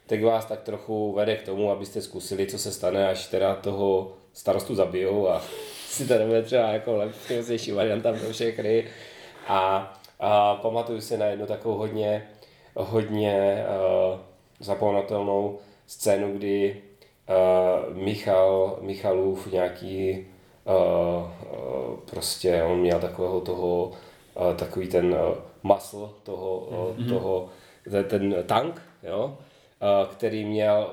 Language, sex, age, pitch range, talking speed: Czech, male, 30-49, 95-105 Hz, 125 wpm